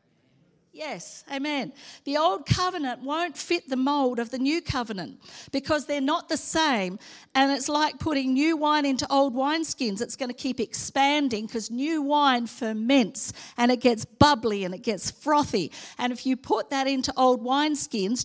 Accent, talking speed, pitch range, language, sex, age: Australian, 170 wpm, 225-285 Hz, English, female, 50-69